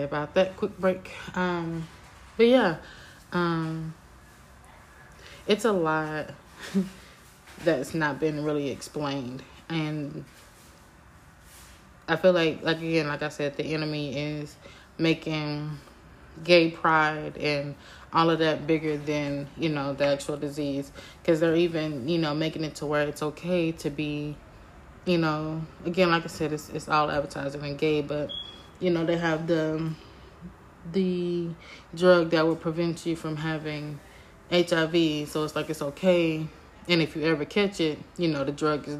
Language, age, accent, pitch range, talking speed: English, 20-39, American, 145-170 Hz, 150 wpm